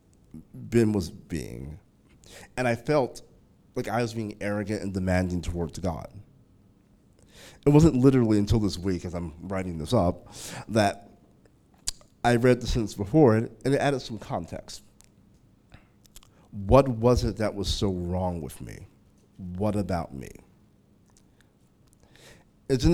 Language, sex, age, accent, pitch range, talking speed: English, male, 30-49, American, 90-120 Hz, 135 wpm